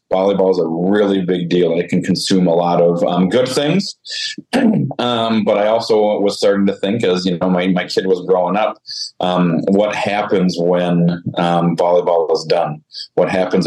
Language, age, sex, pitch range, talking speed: English, 30-49, male, 90-120 Hz, 185 wpm